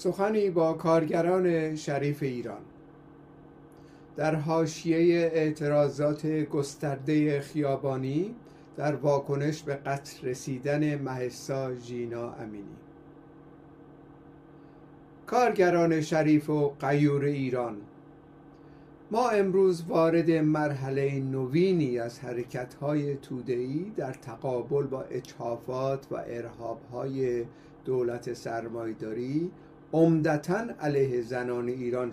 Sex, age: male, 50-69